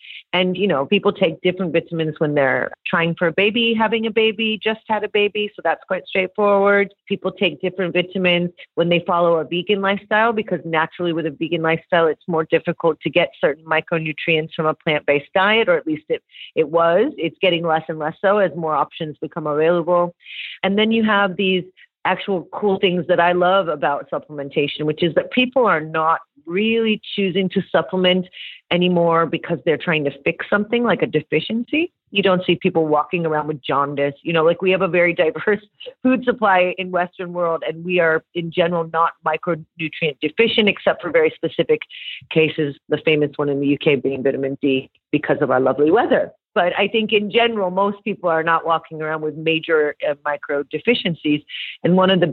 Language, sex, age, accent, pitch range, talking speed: English, female, 40-59, American, 160-190 Hz, 195 wpm